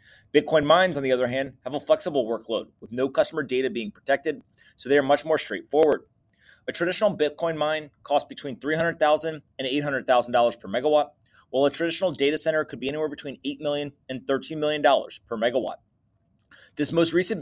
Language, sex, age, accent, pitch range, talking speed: English, male, 30-49, American, 125-150 Hz, 180 wpm